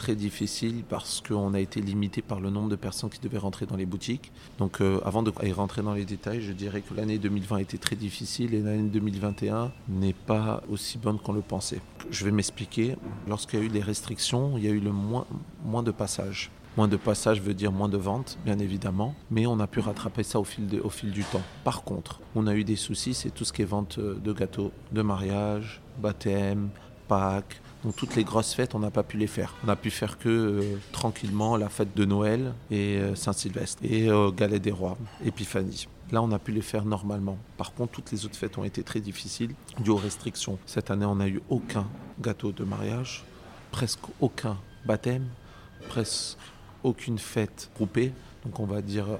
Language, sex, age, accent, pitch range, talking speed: French, male, 40-59, French, 100-115 Hz, 215 wpm